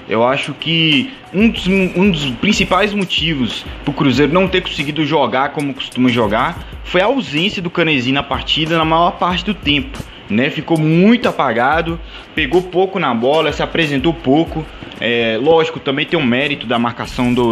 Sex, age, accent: male, 20-39, Brazilian